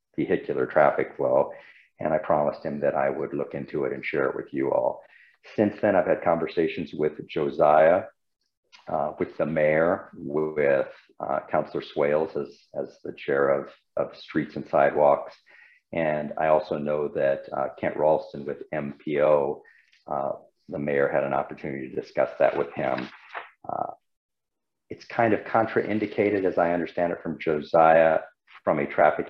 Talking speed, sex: 160 wpm, male